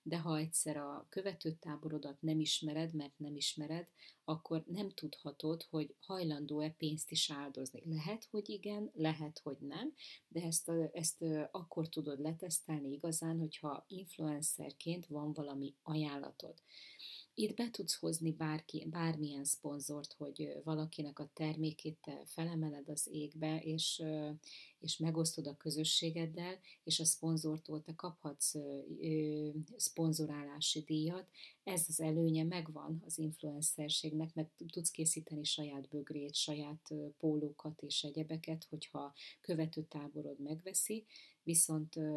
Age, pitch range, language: 30-49, 150-165 Hz, Hungarian